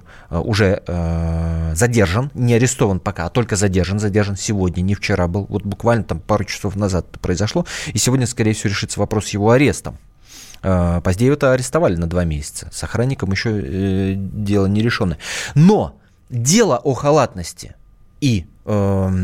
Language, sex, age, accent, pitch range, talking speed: Russian, male, 20-39, native, 100-145 Hz, 155 wpm